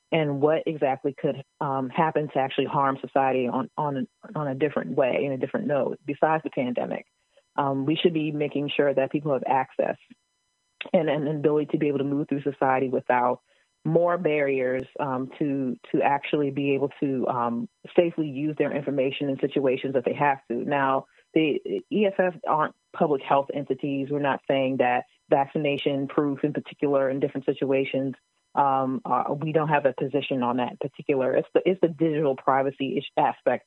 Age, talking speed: 30-49, 175 wpm